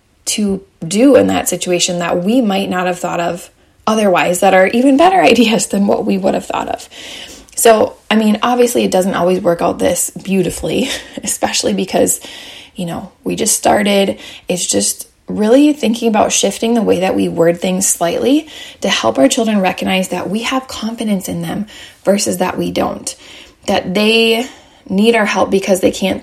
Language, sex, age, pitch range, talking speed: English, female, 20-39, 180-230 Hz, 180 wpm